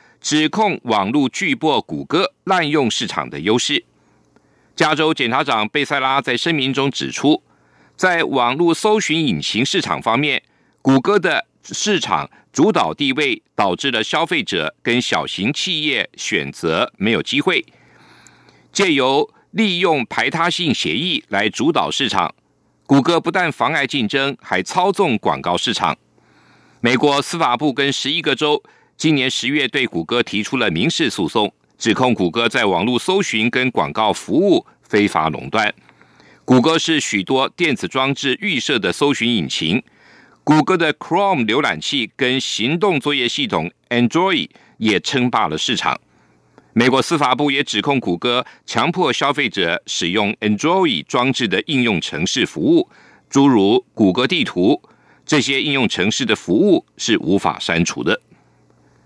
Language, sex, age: German, male, 50-69